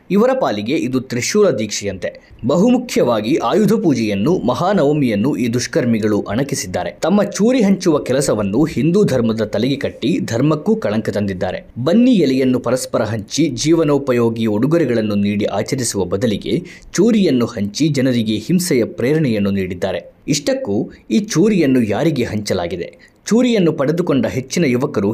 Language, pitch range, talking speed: Kannada, 105-165 Hz, 110 wpm